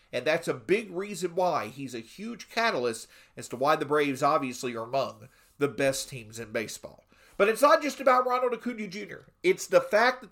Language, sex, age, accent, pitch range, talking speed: English, male, 40-59, American, 160-230 Hz, 205 wpm